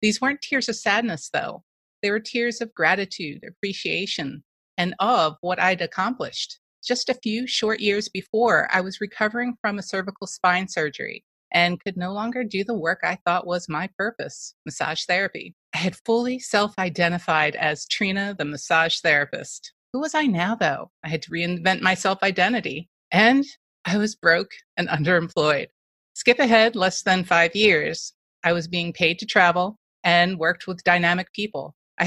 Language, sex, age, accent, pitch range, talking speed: English, female, 30-49, American, 175-220 Hz, 170 wpm